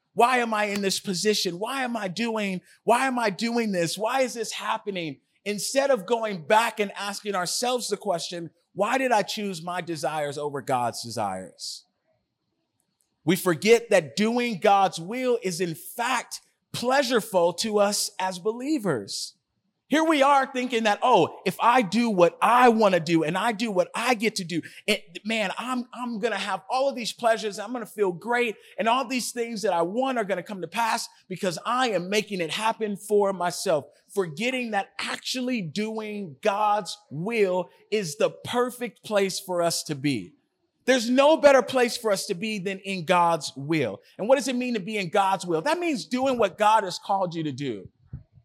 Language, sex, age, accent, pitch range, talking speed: English, male, 30-49, American, 180-235 Hz, 190 wpm